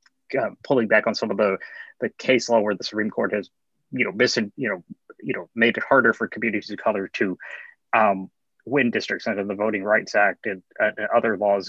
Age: 30-49